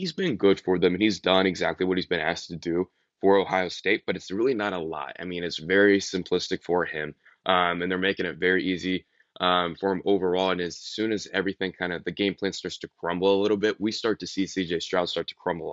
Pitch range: 90-100 Hz